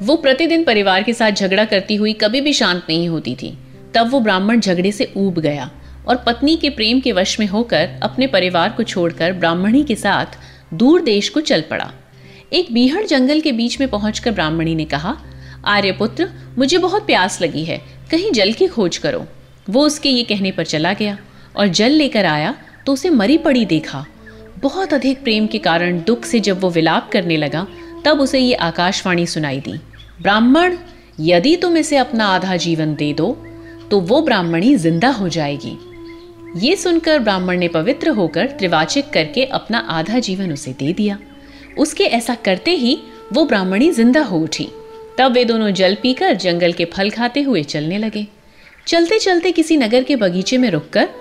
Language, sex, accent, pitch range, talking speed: Hindi, female, native, 175-275 Hz, 180 wpm